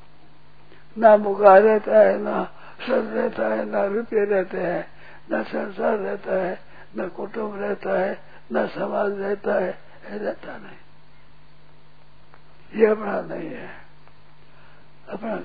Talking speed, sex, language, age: 115 wpm, male, Hindi, 60-79